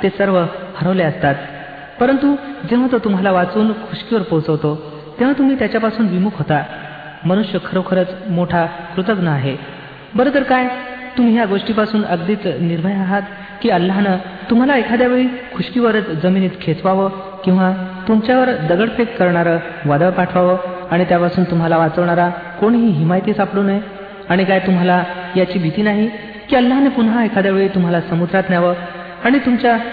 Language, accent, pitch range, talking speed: Marathi, native, 170-215 Hz, 140 wpm